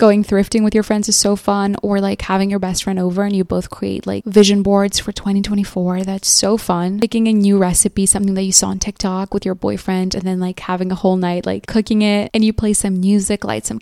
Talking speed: 245 wpm